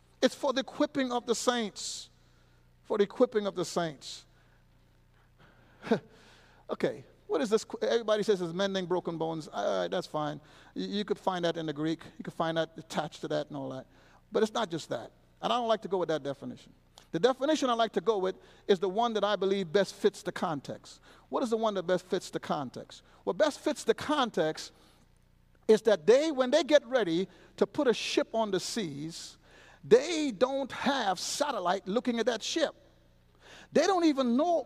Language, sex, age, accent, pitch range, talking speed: English, male, 50-69, American, 170-255 Hz, 200 wpm